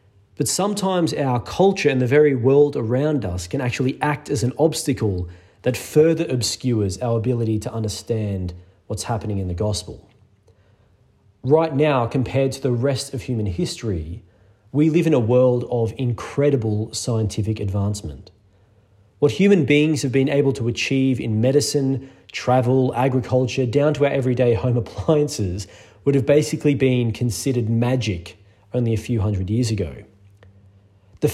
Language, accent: English, Australian